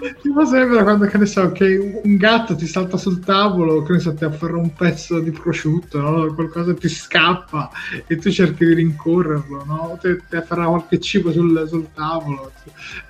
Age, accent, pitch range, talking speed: 20-39, native, 145-180 Hz, 170 wpm